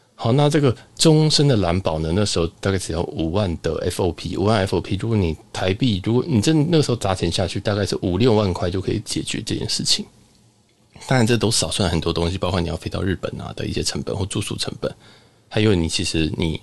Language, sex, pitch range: Chinese, male, 90-115 Hz